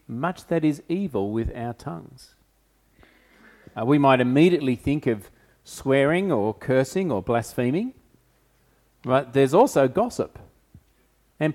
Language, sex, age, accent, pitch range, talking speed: English, male, 40-59, Australian, 115-170 Hz, 120 wpm